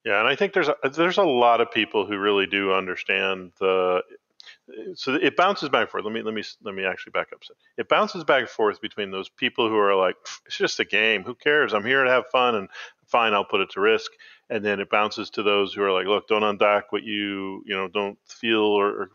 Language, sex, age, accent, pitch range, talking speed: English, male, 40-59, American, 105-170 Hz, 250 wpm